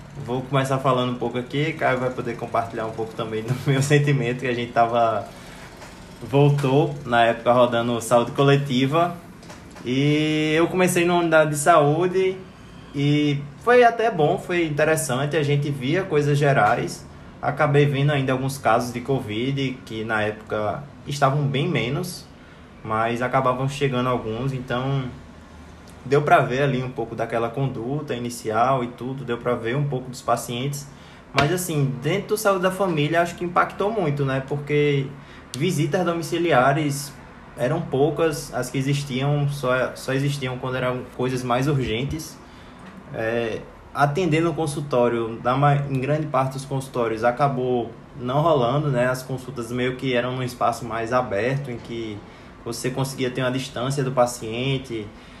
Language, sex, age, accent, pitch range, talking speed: Portuguese, male, 20-39, Brazilian, 120-145 Hz, 150 wpm